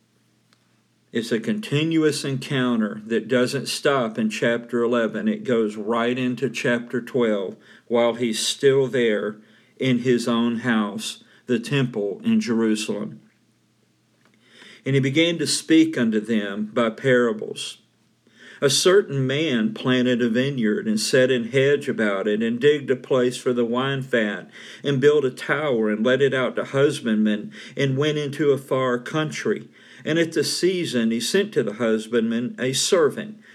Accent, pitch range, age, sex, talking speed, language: American, 115-155 Hz, 50-69, male, 150 wpm, English